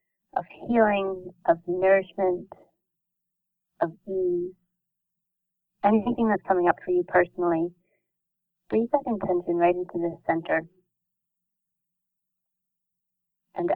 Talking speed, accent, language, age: 90 wpm, American, English, 30-49